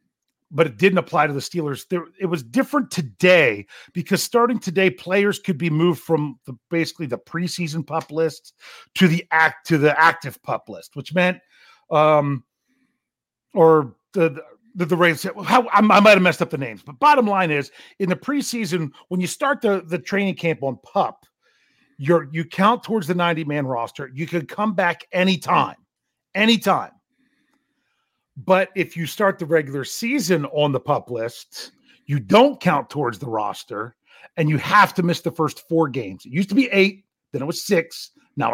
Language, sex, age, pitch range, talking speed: English, male, 40-59, 150-200 Hz, 180 wpm